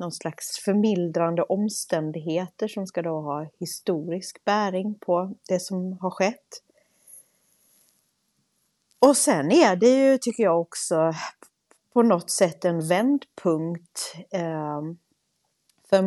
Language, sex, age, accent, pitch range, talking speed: Swedish, female, 30-49, native, 165-195 Hz, 110 wpm